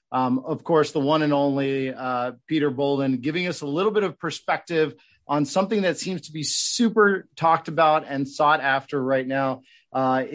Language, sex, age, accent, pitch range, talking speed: English, male, 30-49, American, 130-150 Hz, 185 wpm